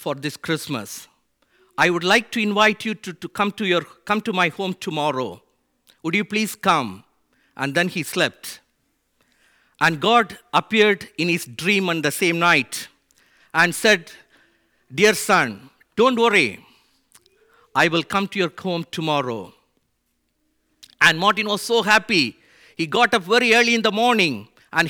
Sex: male